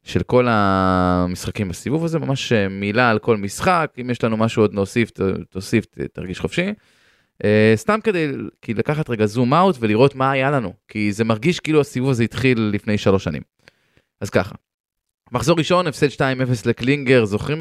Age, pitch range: 20-39, 110-150 Hz